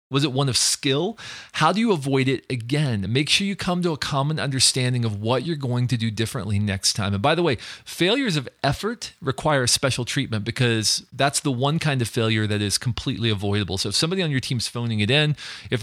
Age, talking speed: 40-59, 225 wpm